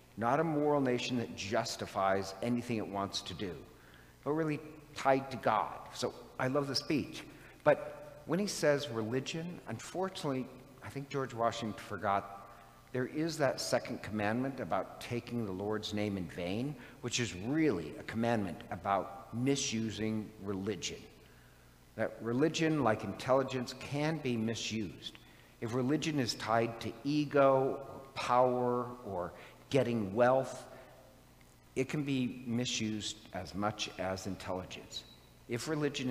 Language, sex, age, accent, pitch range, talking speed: English, male, 50-69, American, 110-135 Hz, 135 wpm